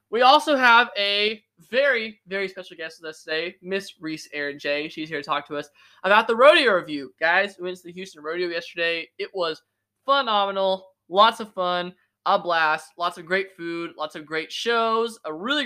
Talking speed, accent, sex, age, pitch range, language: 195 wpm, American, male, 20-39, 160-220 Hz, English